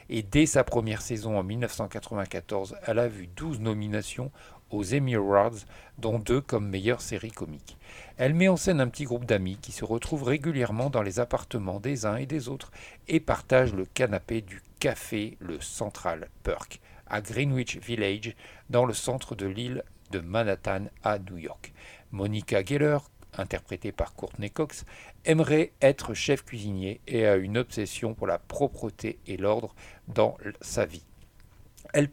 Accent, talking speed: French, 160 wpm